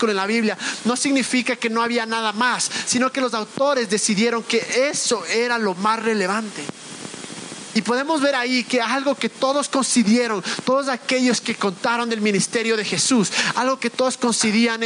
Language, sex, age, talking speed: Spanish, male, 30-49, 170 wpm